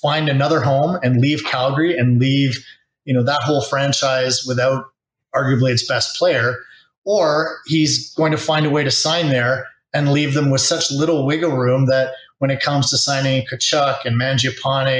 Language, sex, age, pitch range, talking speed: English, male, 30-49, 125-150 Hz, 180 wpm